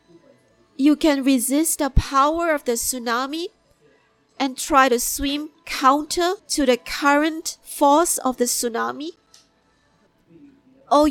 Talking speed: 115 wpm